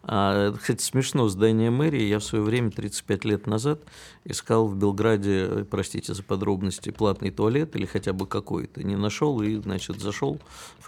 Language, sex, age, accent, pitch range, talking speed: Russian, male, 50-69, native, 100-115 Hz, 170 wpm